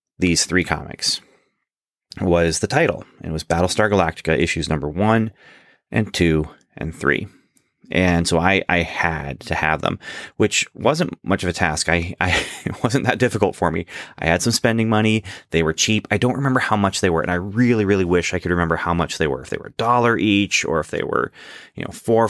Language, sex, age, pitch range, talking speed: English, male, 30-49, 85-105 Hz, 215 wpm